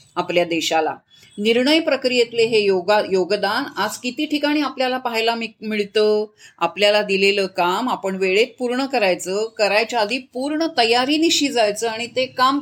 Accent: native